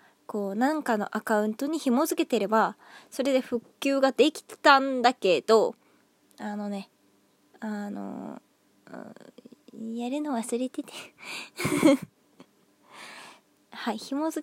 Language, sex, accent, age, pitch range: Japanese, female, native, 20-39, 215-325 Hz